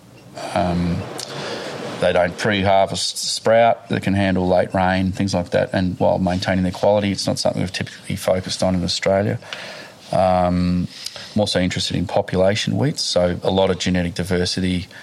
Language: English